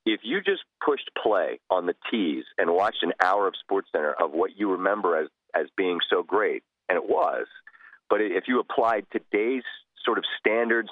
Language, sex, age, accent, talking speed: English, male, 40-59, American, 185 wpm